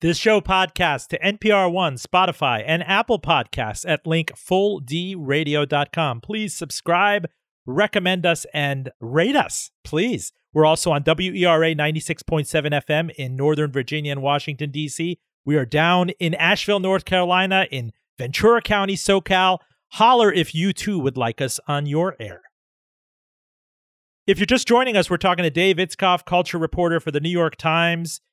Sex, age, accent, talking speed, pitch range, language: male, 40-59, American, 150 wpm, 150-185 Hz, English